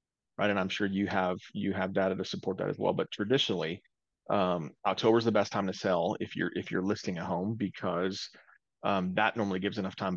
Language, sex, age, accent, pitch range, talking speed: English, male, 30-49, American, 95-110 Hz, 225 wpm